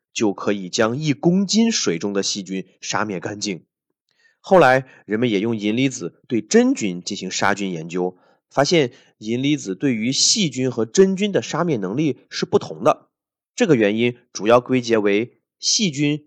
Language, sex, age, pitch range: Chinese, male, 30-49, 105-165 Hz